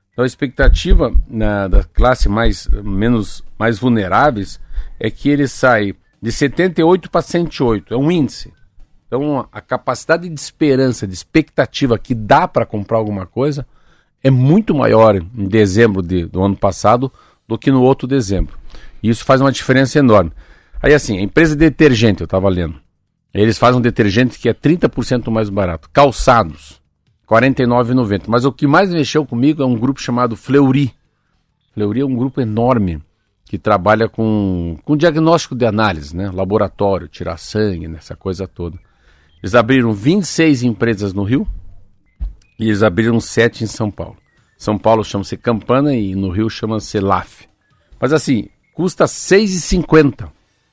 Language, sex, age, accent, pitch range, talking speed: Portuguese, male, 50-69, Brazilian, 100-135 Hz, 150 wpm